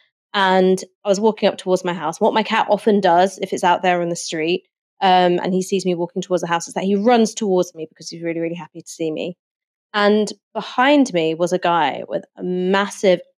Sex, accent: female, British